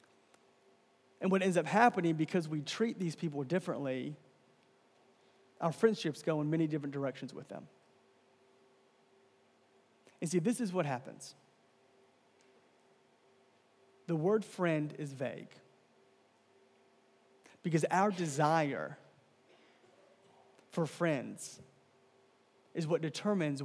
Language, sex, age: English, male, 30-49